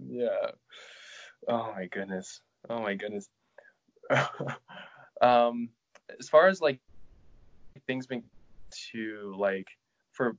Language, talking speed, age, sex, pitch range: English, 100 wpm, 20-39, male, 105-130 Hz